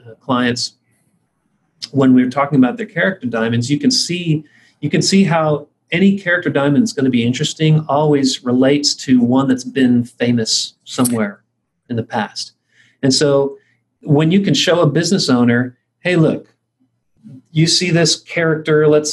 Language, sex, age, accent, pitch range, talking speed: English, male, 40-59, American, 125-180 Hz, 160 wpm